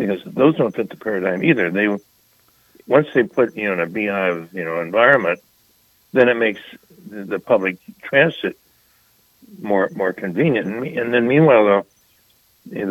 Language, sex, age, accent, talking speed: English, male, 60-79, American, 155 wpm